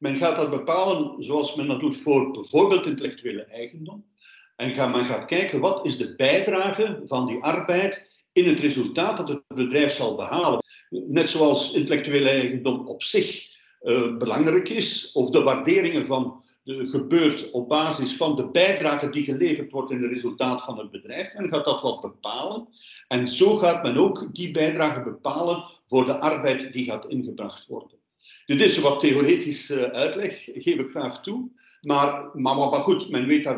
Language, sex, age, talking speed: Dutch, male, 50-69, 170 wpm